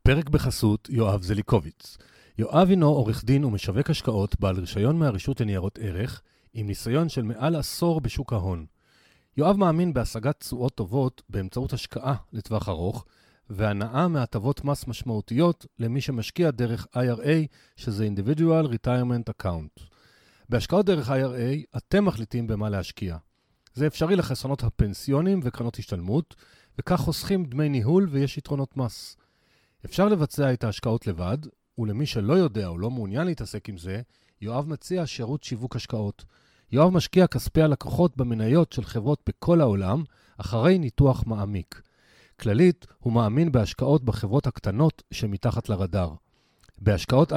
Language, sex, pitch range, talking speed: Hebrew, male, 105-150 Hz, 130 wpm